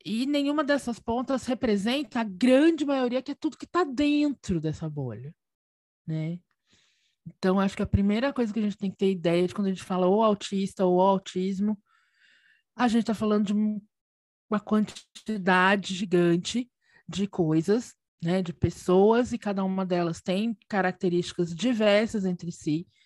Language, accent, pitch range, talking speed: Portuguese, Brazilian, 180-240 Hz, 160 wpm